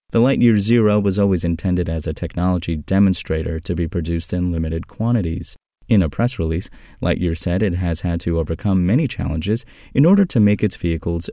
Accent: American